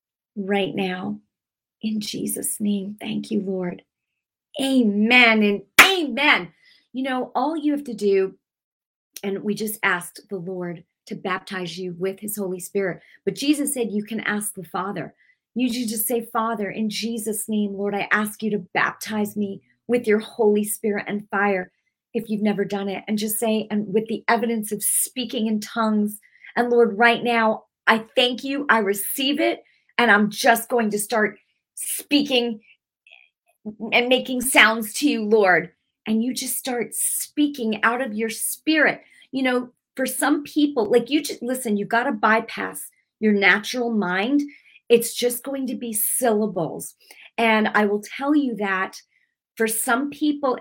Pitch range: 205-245 Hz